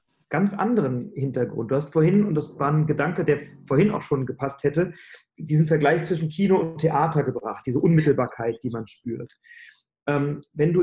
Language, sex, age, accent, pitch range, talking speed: German, male, 30-49, German, 140-170 Hz, 175 wpm